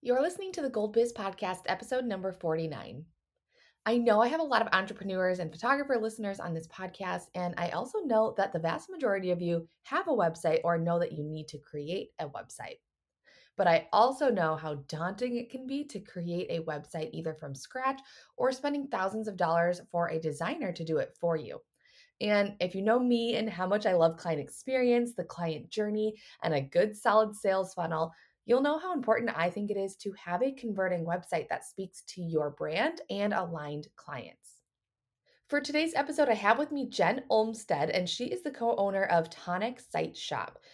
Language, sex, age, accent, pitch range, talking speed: English, female, 20-39, American, 170-240 Hz, 200 wpm